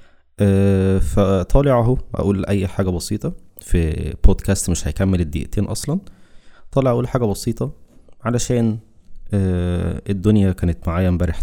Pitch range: 85-100 Hz